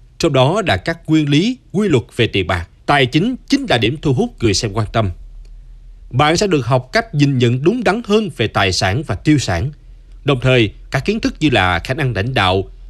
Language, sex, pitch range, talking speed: Vietnamese, male, 115-160 Hz, 230 wpm